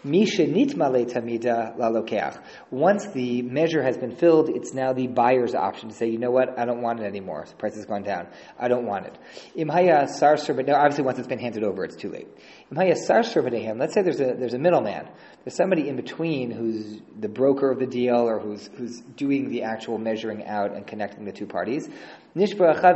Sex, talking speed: male, 185 wpm